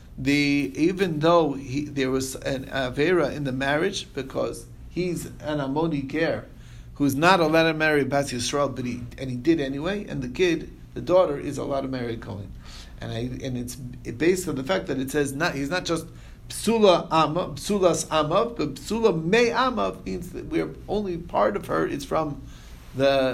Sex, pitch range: male, 125-165 Hz